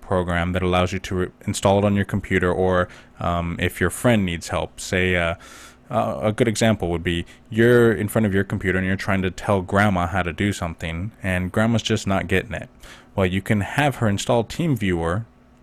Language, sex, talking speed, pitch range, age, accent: English, male, 210 wpm, 90-110 Hz, 20-39, American